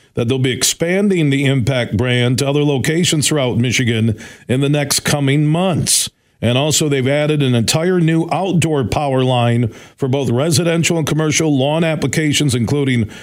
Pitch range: 120-150 Hz